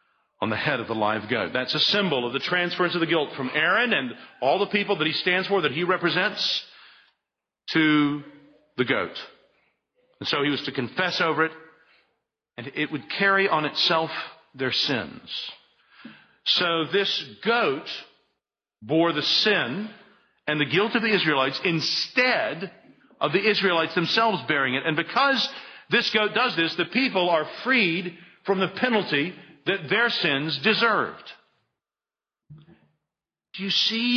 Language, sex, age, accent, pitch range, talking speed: English, male, 50-69, American, 150-200 Hz, 155 wpm